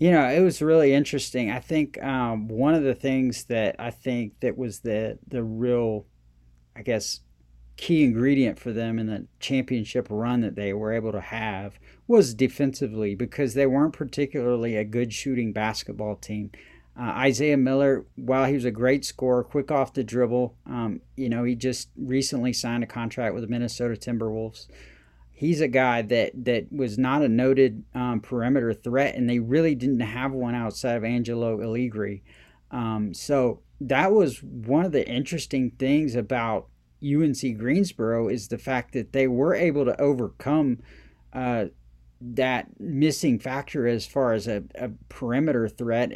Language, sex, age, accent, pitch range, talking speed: English, male, 40-59, American, 110-135 Hz, 165 wpm